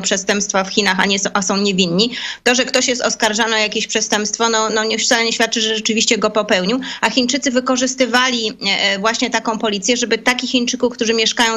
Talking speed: 180 wpm